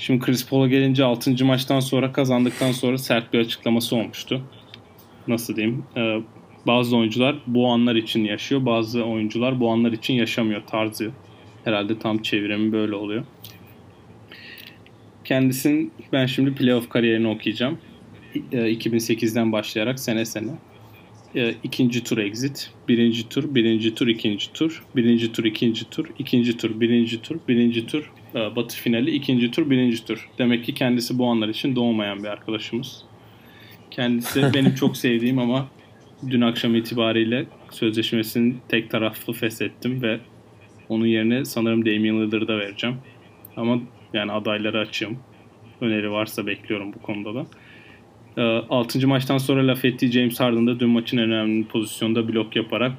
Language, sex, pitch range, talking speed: Turkish, male, 110-125 Hz, 145 wpm